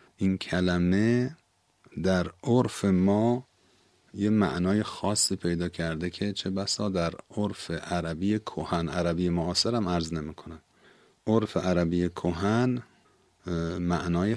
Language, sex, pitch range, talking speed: Persian, male, 85-105 Hz, 105 wpm